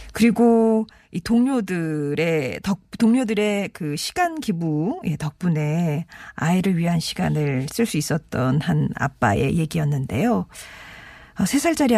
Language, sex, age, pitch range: Korean, female, 40-59, 150-215 Hz